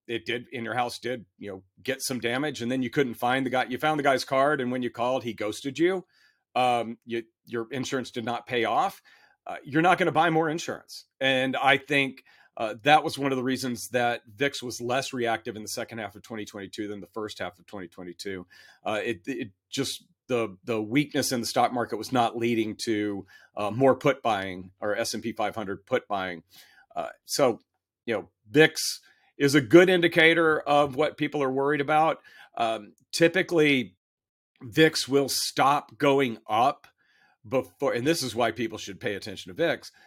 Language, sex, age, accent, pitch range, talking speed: English, male, 40-59, American, 115-145 Hz, 200 wpm